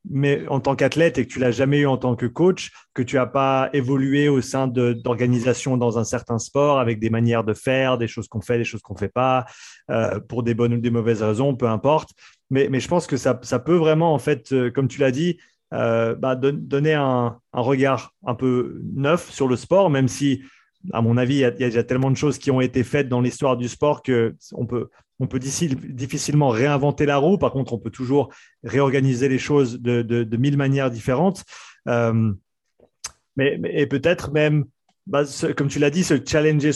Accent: French